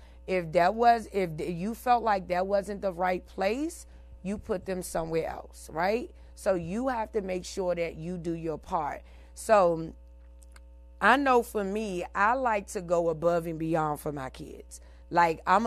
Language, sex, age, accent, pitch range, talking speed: English, female, 30-49, American, 170-225 Hz, 175 wpm